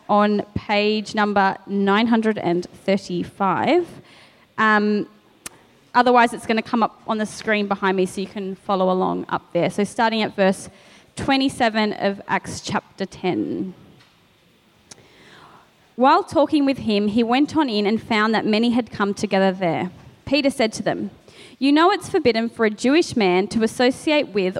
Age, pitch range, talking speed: 20-39, 195-250 Hz, 155 wpm